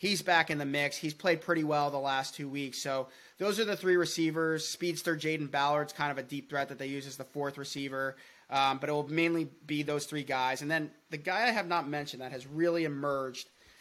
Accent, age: American, 30-49